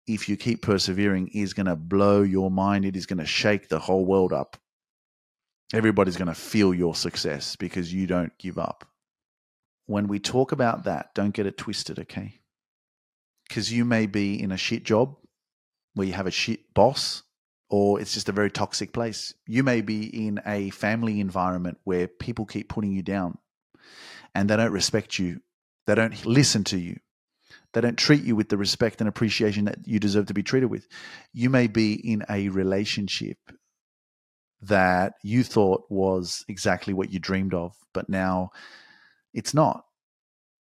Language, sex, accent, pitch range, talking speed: English, male, Australian, 95-110 Hz, 175 wpm